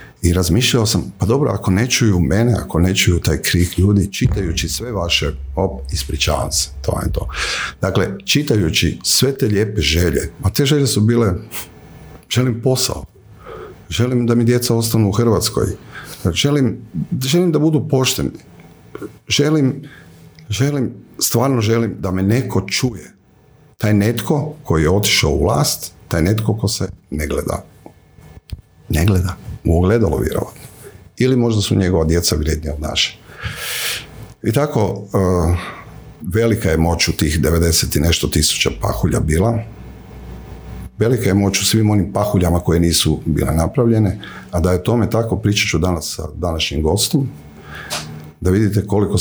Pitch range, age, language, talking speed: 85-115 Hz, 50-69, Croatian, 150 wpm